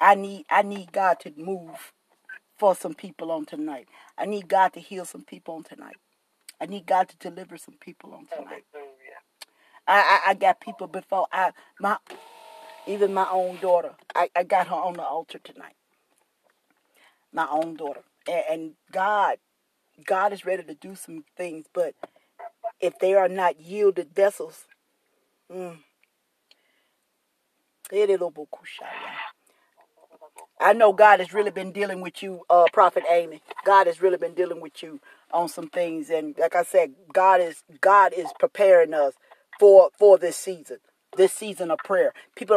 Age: 40-59